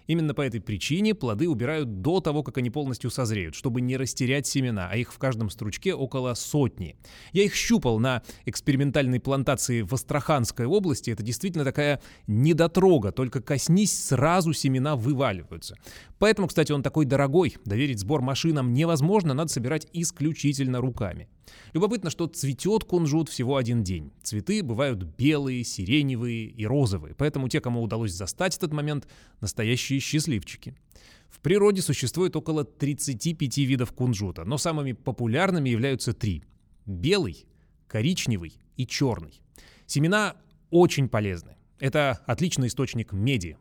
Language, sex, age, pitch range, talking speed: Russian, male, 20-39, 115-155 Hz, 135 wpm